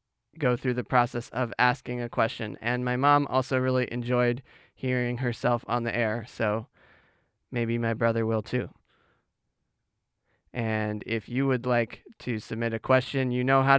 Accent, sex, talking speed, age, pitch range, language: American, male, 160 wpm, 20-39, 120-135 Hz, English